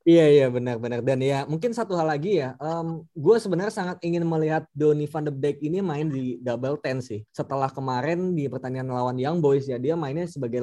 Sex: male